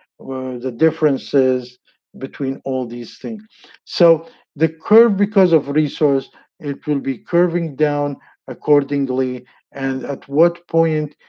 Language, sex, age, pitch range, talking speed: English, male, 50-69, 135-160 Hz, 115 wpm